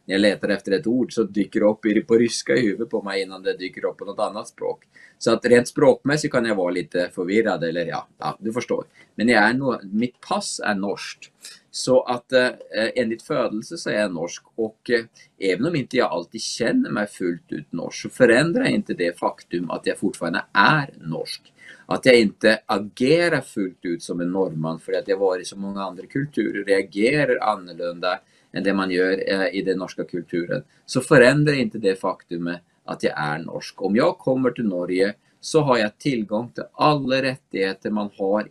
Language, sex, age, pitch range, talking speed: English, male, 30-49, 95-140 Hz, 205 wpm